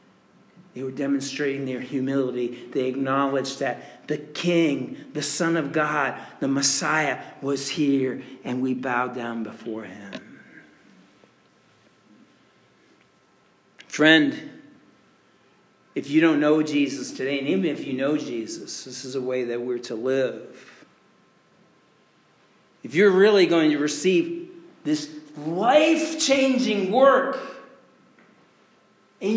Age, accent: 50-69, American